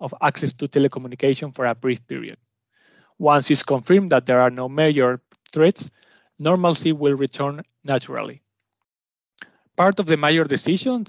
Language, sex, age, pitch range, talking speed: English, male, 30-49, 135-165 Hz, 140 wpm